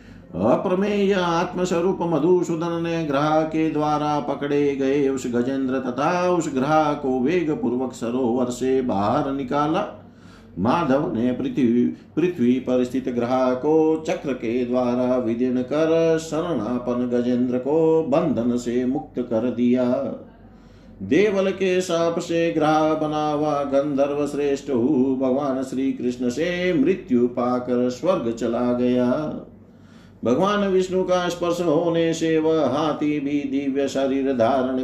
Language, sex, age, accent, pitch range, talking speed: Hindi, male, 50-69, native, 125-160 Hz, 125 wpm